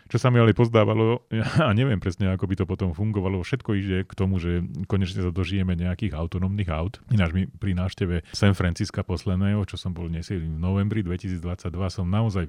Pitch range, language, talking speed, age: 90-105 Hz, Slovak, 190 wpm, 30-49